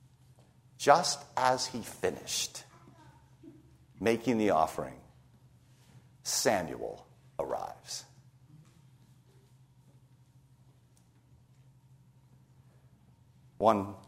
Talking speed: 45 wpm